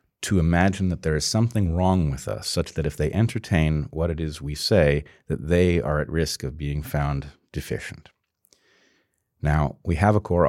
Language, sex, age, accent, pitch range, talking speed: Czech, male, 40-59, American, 75-95 Hz, 190 wpm